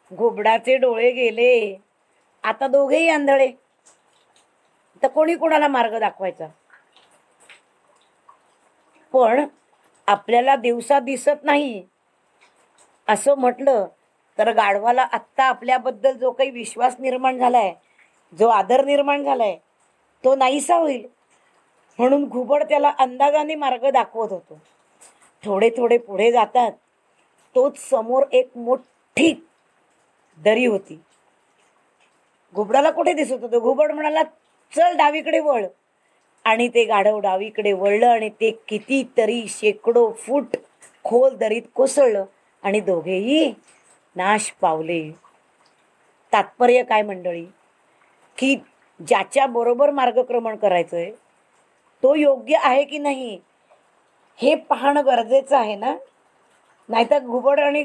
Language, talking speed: Marathi, 105 wpm